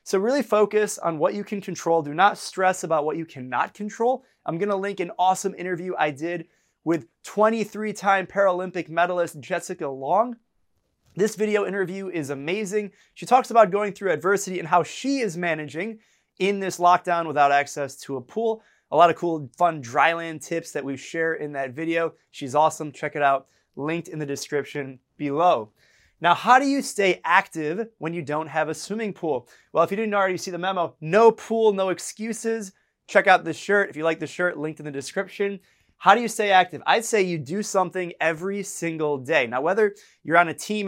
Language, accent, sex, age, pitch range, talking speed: English, American, male, 20-39, 155-200 Hz, 200 wpm